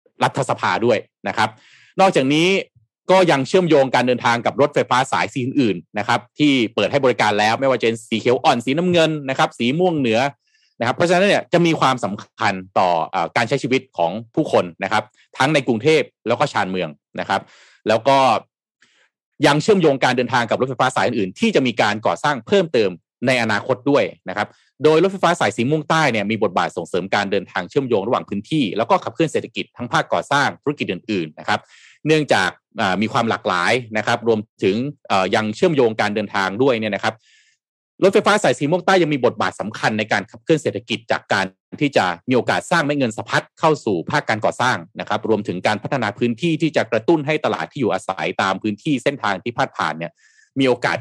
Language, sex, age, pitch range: Thai, male, 30-49, 110-155 Hz